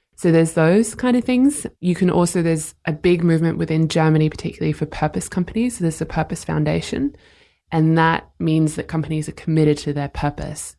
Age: 20-39